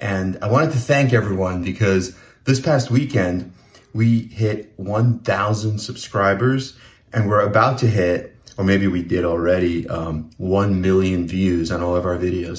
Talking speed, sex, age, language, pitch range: 155 wpm, male, 30-49, English, 95-120 Hz